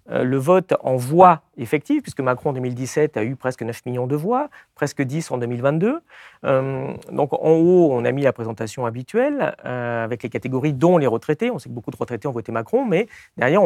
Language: French